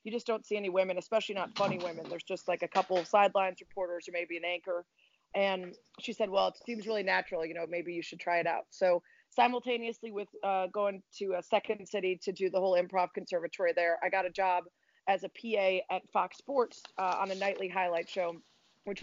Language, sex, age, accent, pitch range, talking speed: English, female, 30-49, American, 180-205 Hz, 225 wpm